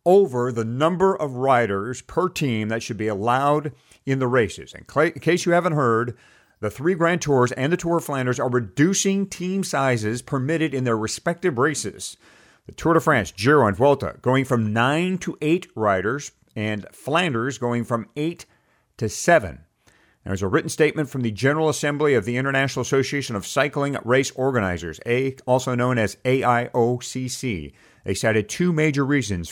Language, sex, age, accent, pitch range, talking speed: English, male, 50-69, American, 115-150 Hz, 175 wpm